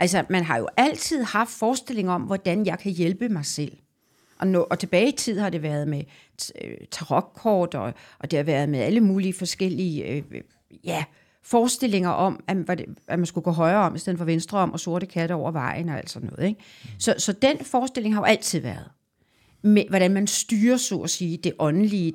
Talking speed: 185 wpm